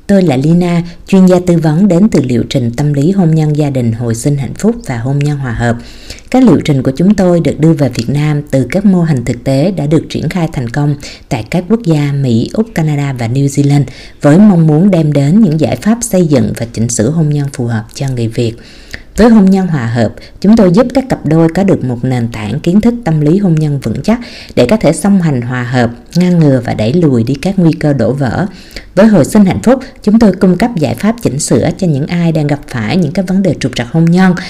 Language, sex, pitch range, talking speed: Vietnamese, female, 140-185 Hz, 255 wpm